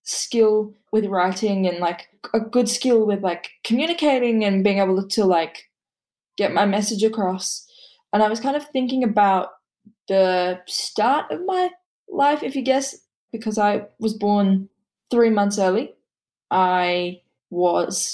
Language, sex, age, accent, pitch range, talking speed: English, female, 10-29, Australian, 190-225 Hz, 145 wpm